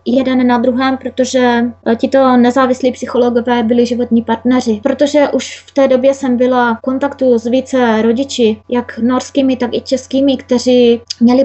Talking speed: 150 wpm